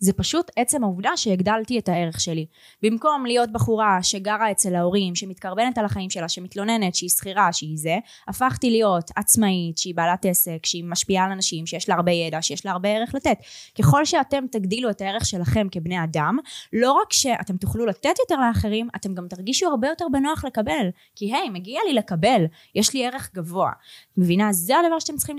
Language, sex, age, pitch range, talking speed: Hebrew, female, 20-39, 180-255 Hz, 185 wpm